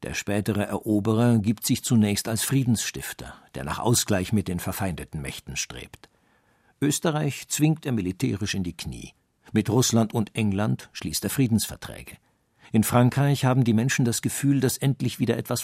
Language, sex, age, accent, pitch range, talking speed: German, male, 50-69, German, 95-125 Hz, 155 wpm